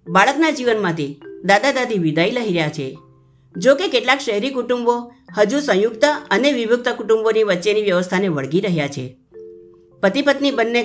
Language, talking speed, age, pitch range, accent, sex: Gujarati, 145 wpm, 50-69, 170-240 Hz, native, female